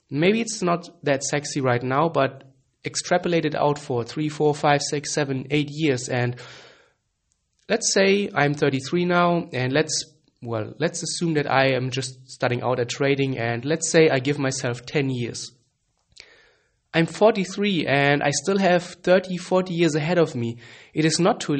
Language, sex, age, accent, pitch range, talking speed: English, male, 20-39, German, 125-155 Hz, 170 wpm